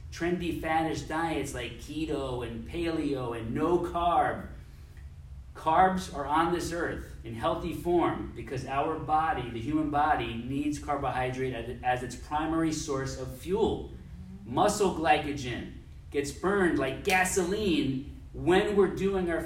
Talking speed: 130 wpm